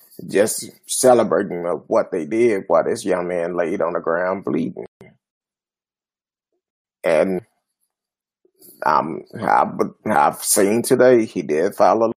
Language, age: English, 30-49